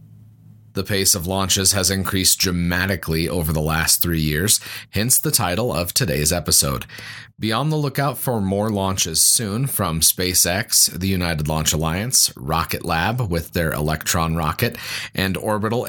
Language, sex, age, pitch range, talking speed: English, male, 30-49, 90-115 Hz, 150 wpm